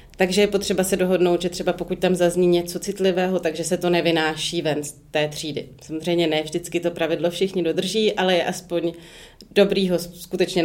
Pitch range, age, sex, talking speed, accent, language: 180-205 Hz, 30-49, female, 185 wpm, native, Czech